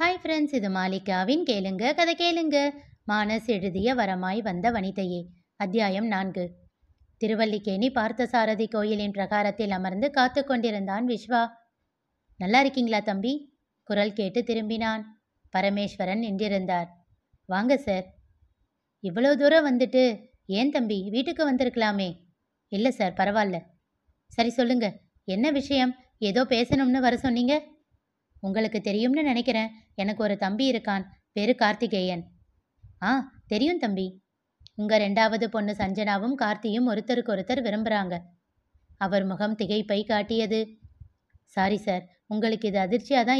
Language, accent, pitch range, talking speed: Tamil, native, 195-250 Hz, 110 wpm